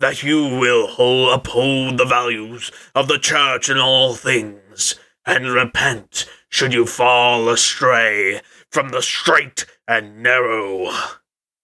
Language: English